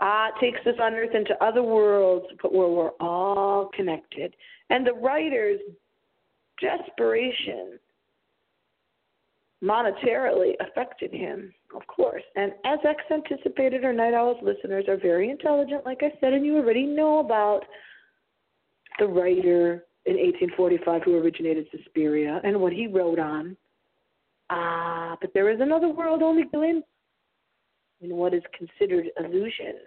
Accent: American